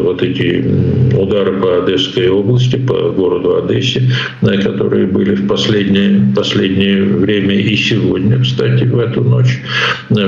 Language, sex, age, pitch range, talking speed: Ukrainian, male, 60-79, 95-125 Hz, 125 wpm